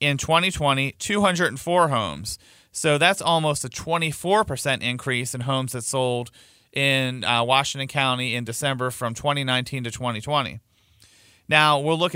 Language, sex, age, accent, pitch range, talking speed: English, male, 40-59, American, 120-160 Hz, 135 wpm